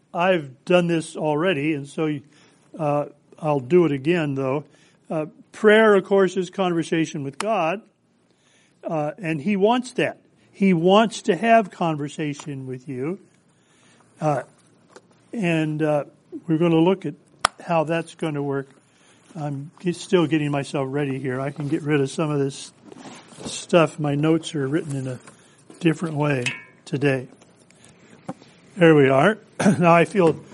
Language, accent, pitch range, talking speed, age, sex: English, American, 145-190 Hz, 145 wpm, 50-69, male